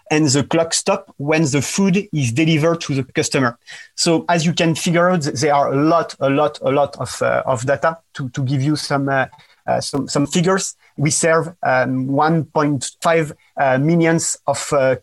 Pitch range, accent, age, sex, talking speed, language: 135-165 Hz, French, 30-49, male, 190 wpm, English